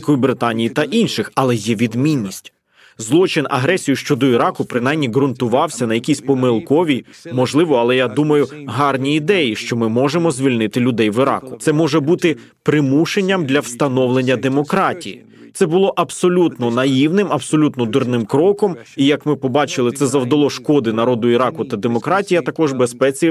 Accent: native